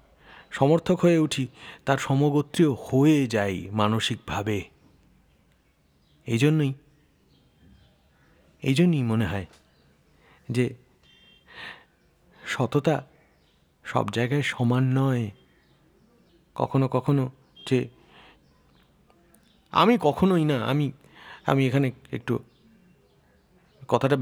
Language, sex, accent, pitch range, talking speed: Bengali, male, native, 125-160 Hz, 75 wpm